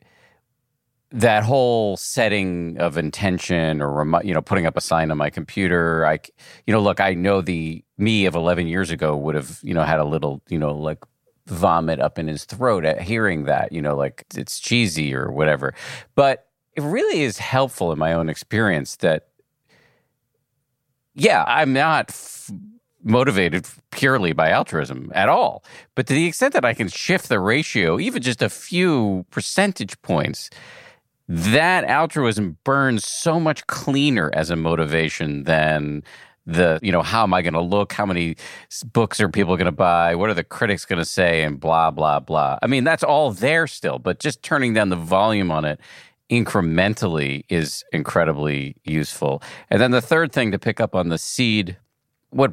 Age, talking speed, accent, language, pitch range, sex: 40-59, 175 wpm, American, English, 80-120 Hz, male